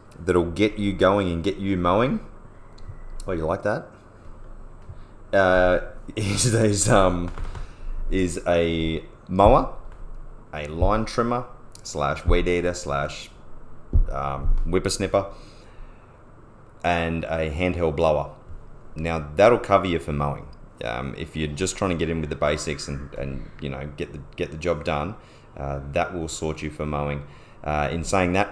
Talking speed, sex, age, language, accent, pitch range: 145 wpm, male, 30-49, English, Australian, 75-100 Hz